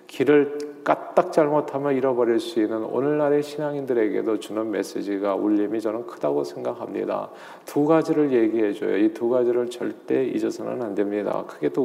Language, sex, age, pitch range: Korean, male, 40-59, 115-155 Hz